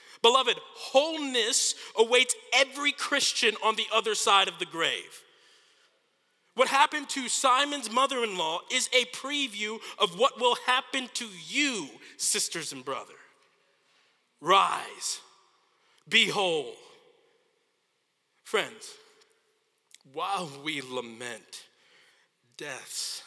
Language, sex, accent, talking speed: English, male, American, 95 wpm